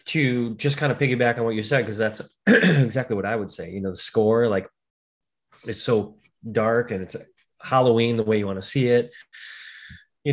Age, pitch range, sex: 20-39, 105-125 Hz, male